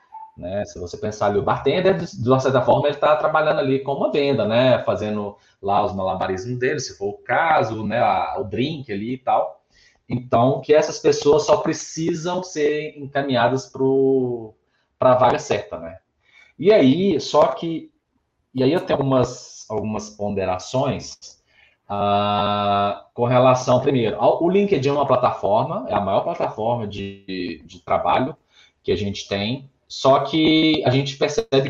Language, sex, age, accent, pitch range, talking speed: Portuguese, male, 20-39, Brazilian, 110-145 Hz, 160 wpm